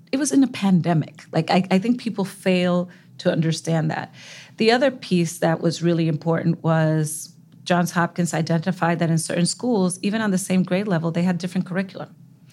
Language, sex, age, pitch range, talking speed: English, female, 40-59, 155-185 Hz, 185 wpm